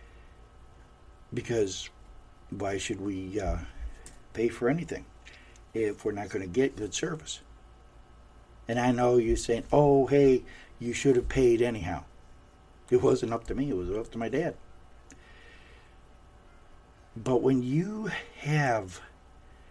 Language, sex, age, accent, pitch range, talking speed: English, male, 60-79, American, 85-125 Hz, 130 wpm